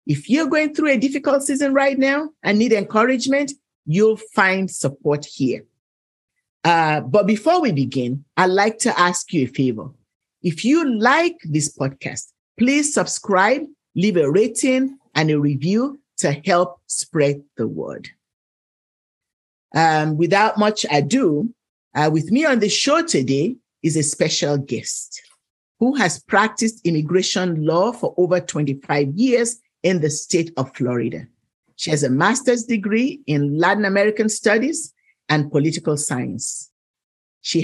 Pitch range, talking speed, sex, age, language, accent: 150-245 Hz, 140 wpm, male, 50-69, English, Nigerian